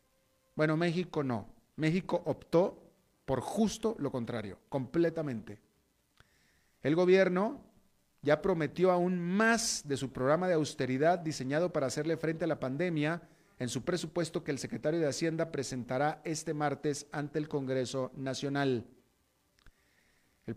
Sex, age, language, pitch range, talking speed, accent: male, 40-59, Spanish, 140-175 Hz, 130 wpm, Mexican